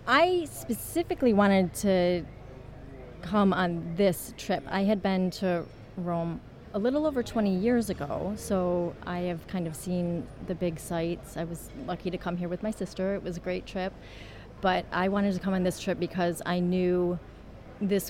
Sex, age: female, 30-49